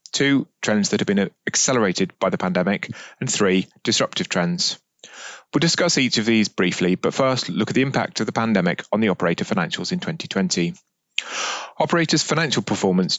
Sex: male